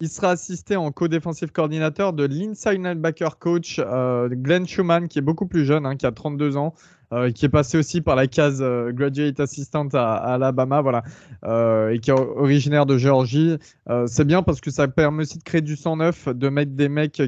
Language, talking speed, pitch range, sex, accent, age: French, 210 wpm, 130-165 Hz, male, French, 20-39